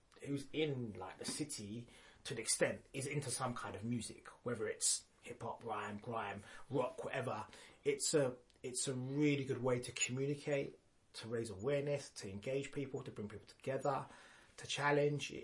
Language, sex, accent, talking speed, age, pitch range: English, male, British, 165 wpm, 20-39, 110-135 Hz